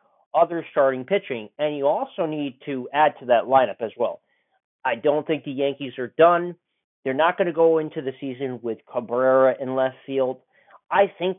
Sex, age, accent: male, 40-59, American